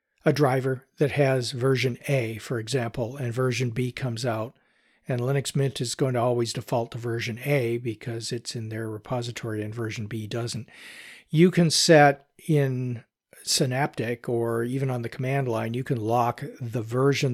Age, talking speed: 50-69, 170 wpm